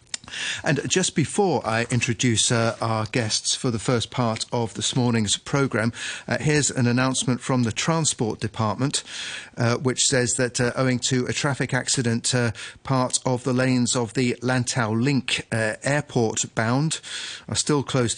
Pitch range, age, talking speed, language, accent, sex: 115-130 Hz, 40-59, 160 wpm, English, British, male